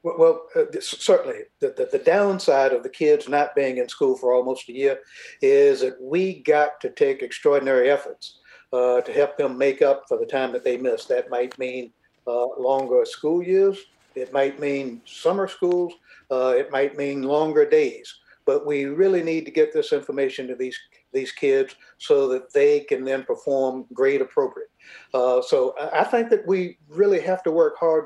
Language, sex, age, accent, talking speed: English, male, 60-79, American, 185 wpm